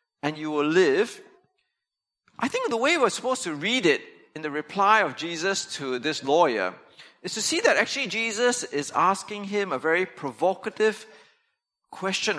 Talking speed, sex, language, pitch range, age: 165 wpm, male, English, 155-250 Hz, 40-59